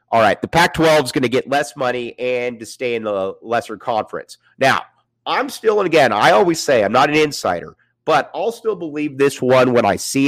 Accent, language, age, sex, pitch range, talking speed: American, English, 30-49, male, 120-165 Hz, 220 wpm